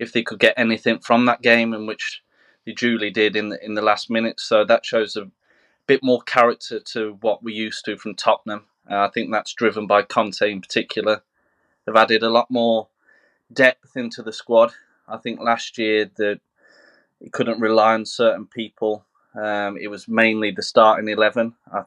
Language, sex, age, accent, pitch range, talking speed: English, male, 20-39, British, 105-115 Hz, 190 wpm